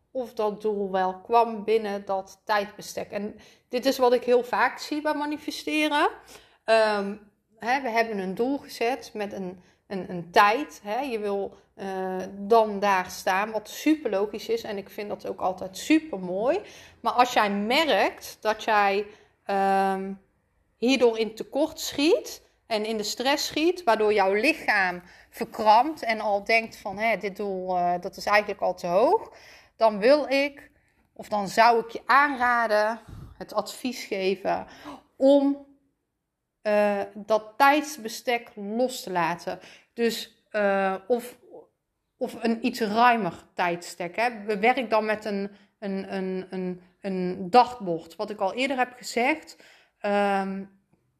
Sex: female